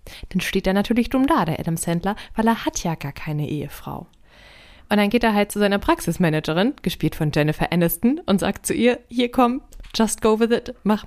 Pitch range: 170-220 Hz